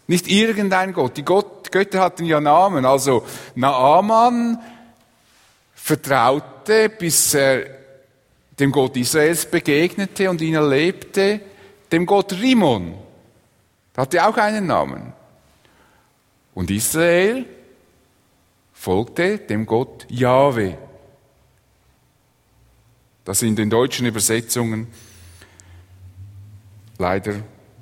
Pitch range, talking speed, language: 115-165 Hz, 90 wpm, English